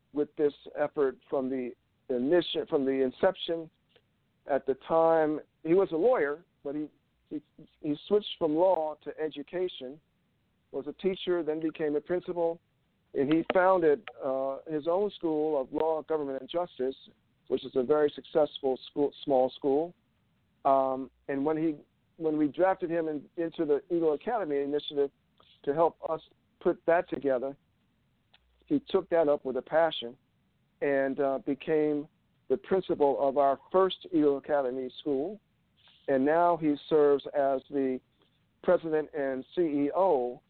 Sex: male